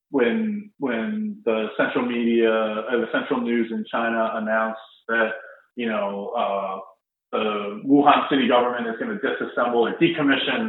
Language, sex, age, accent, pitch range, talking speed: English, male, 30-49, American, 105-135 Hz, 145 wpm